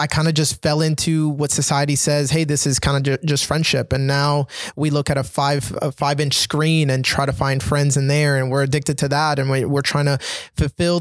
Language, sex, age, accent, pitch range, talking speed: English, male, 20-39, American, 140-165 Hz, 250 wpm